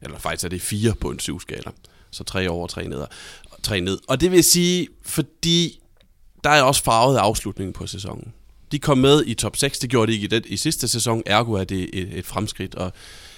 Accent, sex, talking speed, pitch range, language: native, male, 230 wpm, 90-115 Hz, Danish